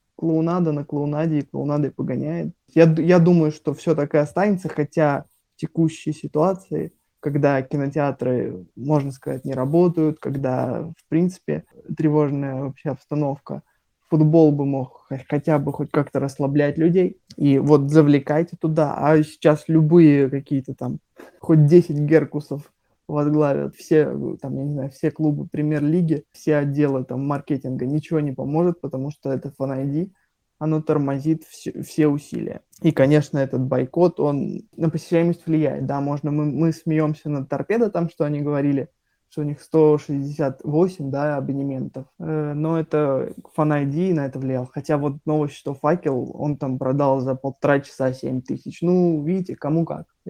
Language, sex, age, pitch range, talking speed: Russian, male, 20-39, 140-160 Hz, 150 wpm